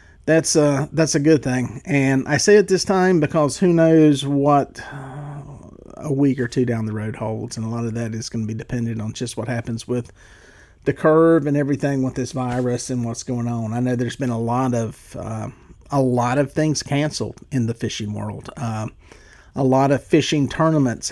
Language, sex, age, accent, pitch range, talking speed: English, male, 40-59, American, 115-140 Hz, 205 wpm